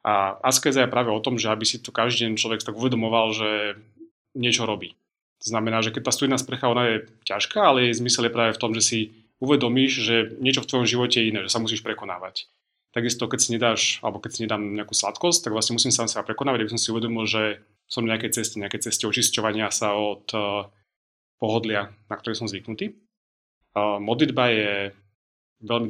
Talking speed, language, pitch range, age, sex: 195 wpm, Slovak, 105-120 Hz, 30-49, male